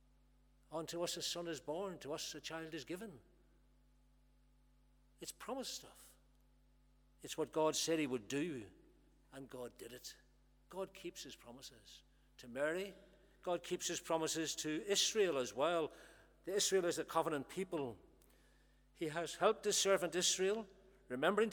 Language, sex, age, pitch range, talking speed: English, male, 60-79, 130-180 Hz, 150 wpm